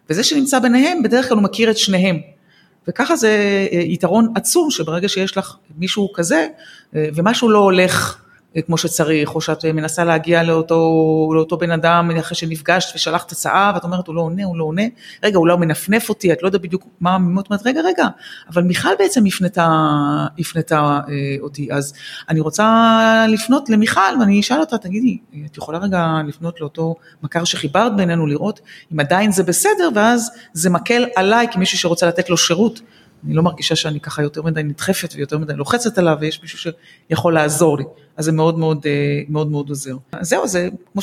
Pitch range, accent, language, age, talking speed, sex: 160-205 Hz, native, Hebrew, 30-49, 175 wpm, female